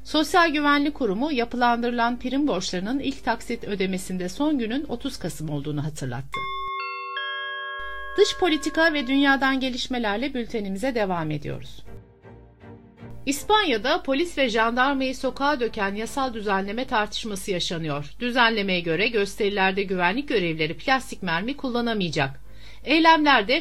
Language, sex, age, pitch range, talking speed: Turkish, female, 60-79, 180-265 Hz, 105 wpm